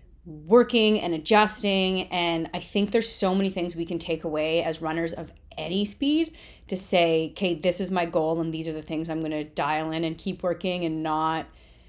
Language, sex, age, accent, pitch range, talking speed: English, female, 30-49, American, 165-210 Hz, 205 wpm